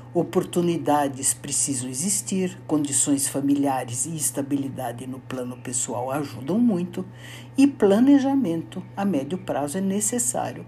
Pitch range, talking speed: 125-195 Hz, 105 wpm